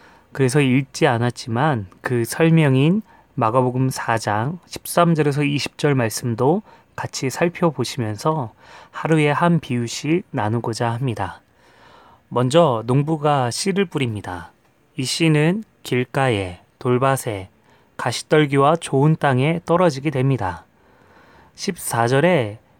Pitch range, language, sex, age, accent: 115-155 Hz, Korean, male, 30-49, native